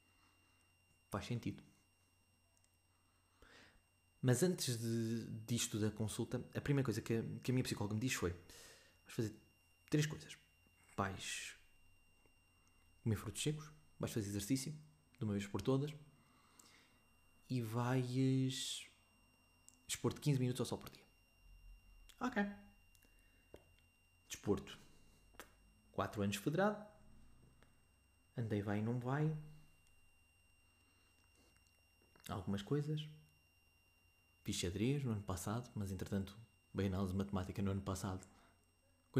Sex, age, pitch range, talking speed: male, 20-39, 90-120 Hz, 105 wpm